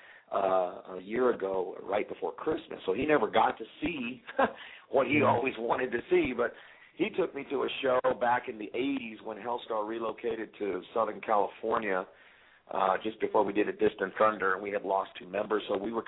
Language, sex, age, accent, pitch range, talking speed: English, male, 50-69, American, 100-135 Hz, 200 wpm